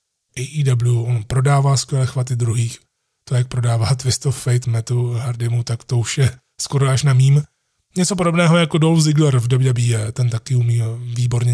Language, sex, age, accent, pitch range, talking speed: Czech, male, 30-49, native, 120-145 Hz, 170 wpm